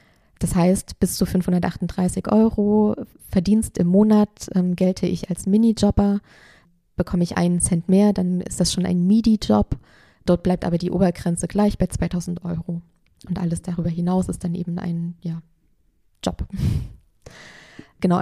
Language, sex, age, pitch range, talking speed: German, female, 20-39, 175-200 Hz, 150 wpm